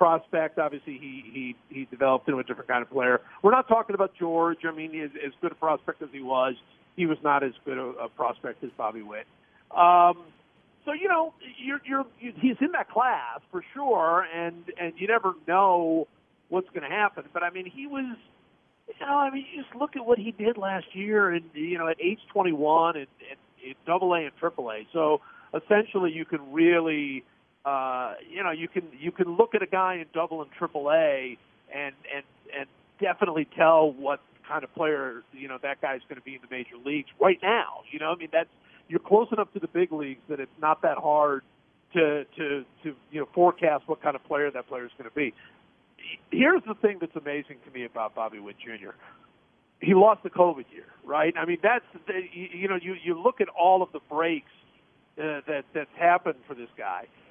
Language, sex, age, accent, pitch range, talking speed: English, male, 50-69, American, 145-195 Hz, 215 wpm